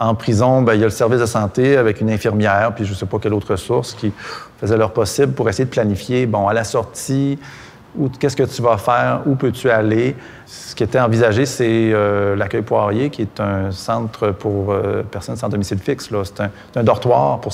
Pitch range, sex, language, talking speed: 105-130 Hz, male, French, 215 wpm